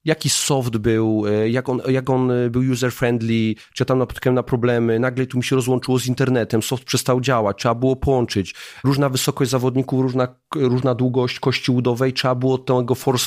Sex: male